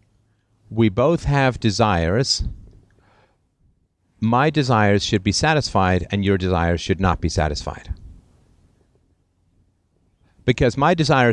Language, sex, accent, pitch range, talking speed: English, male, American, 90-120 Hz, 100 wpm